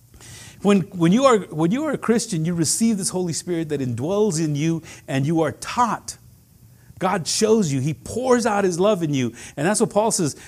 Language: English